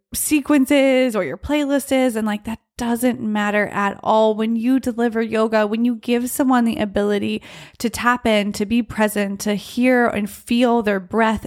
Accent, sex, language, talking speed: American, female, English, 180 wpm